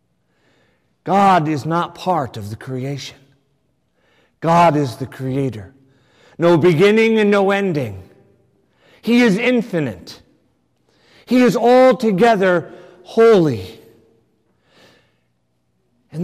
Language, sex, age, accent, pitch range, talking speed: English, male, 50-69, American, 155-225 Hz, 90 wpm